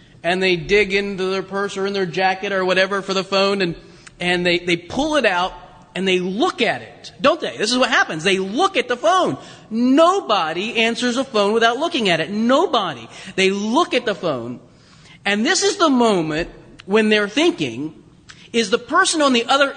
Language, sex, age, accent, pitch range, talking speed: English, male, 30-49, American, 160-245 Hz, 200 wpm